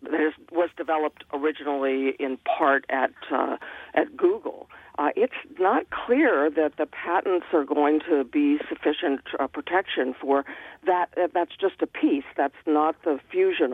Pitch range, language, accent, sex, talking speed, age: 145-195 Hz, English, American, female, 140 wpm, 50-69